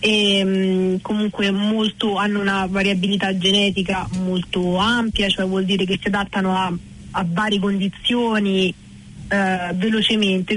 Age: 30-49